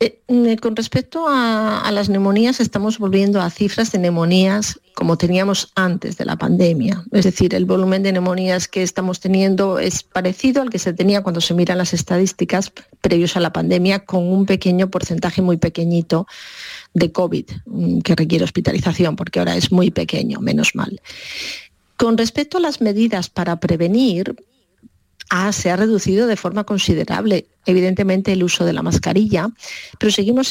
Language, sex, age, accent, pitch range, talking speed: Spanish, female, 40-59, Spanish, 175-210 Hz, 165 wpm